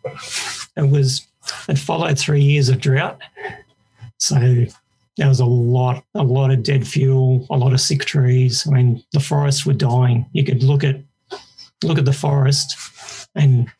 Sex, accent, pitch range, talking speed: male, Australian, 125-140 Hz, 165 wpm